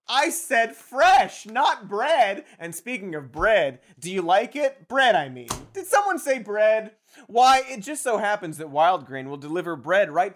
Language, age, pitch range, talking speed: English, 30-49, 165-275 Hz, 185 wpm